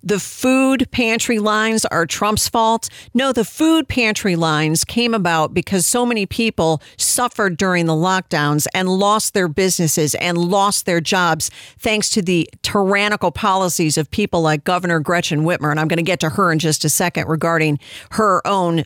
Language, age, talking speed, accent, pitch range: English, 50-69, 175 wpm, American, 165-225 Hz